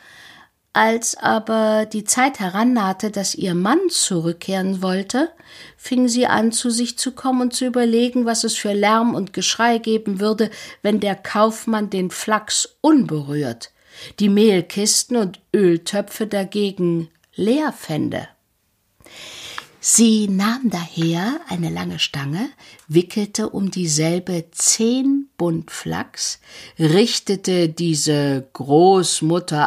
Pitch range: 165-235 Hz